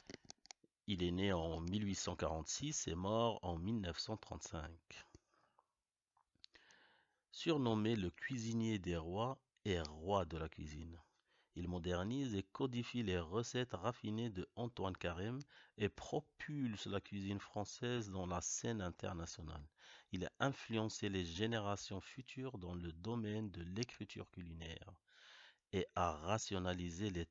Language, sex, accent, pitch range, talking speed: French, male, French, 85-110 Hz, 120 wpm